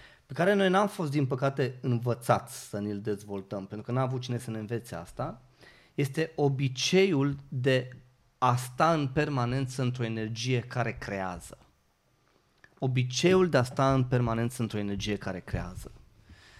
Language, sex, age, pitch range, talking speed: Romanian, male, 30-49, 115-145 Hz, 150 wpm